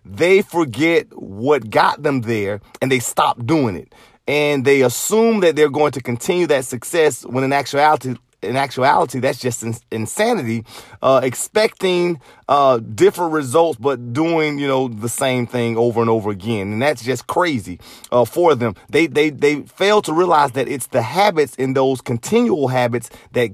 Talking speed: 175 wpm